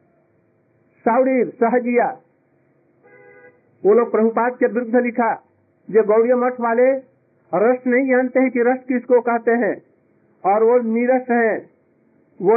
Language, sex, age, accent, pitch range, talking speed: Hindi, male, 50-69, native, 195-235 Hz, 125 wpm